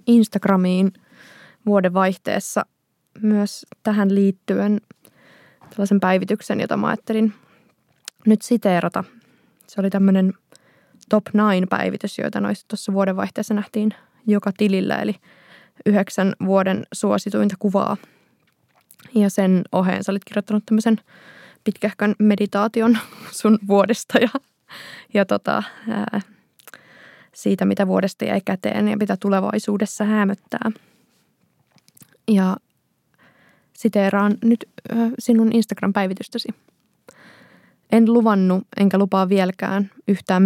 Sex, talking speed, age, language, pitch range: female, 95 wpm, 20-39, Finnish, 190-215 Hz